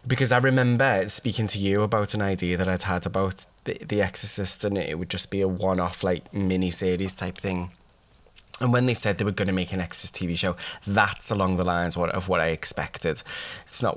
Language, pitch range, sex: English, 90-110 Hz, male